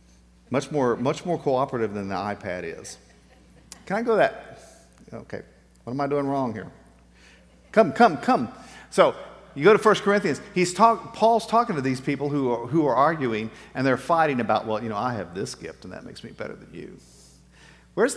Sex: male